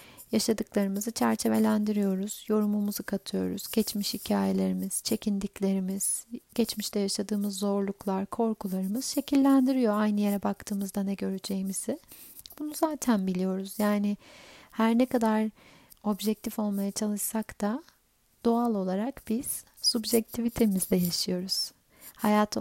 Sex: female